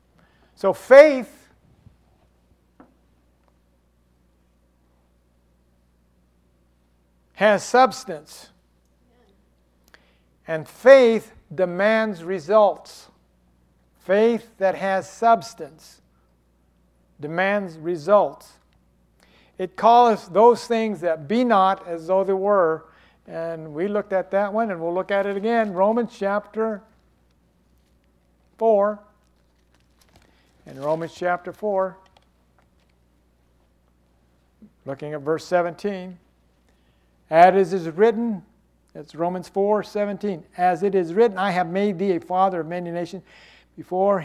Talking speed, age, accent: 95 wpm, 60-79, American